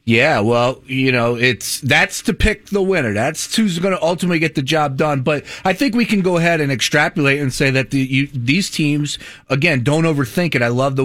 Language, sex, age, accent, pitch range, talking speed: English, male, 30-49, American, 120-155 Hz, 230 wpm